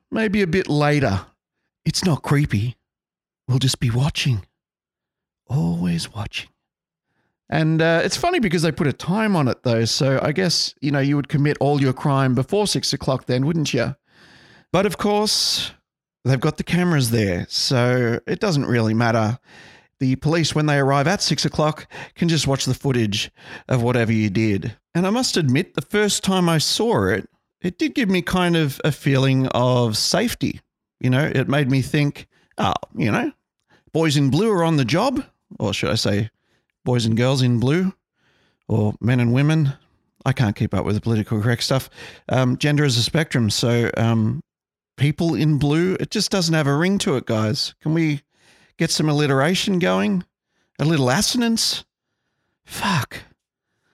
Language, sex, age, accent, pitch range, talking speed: English, male, 30-49, Australian, 125-165 Hz, 175 wpm